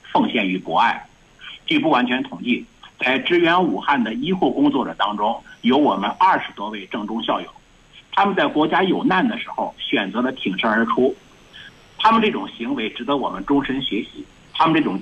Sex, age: male, 50-69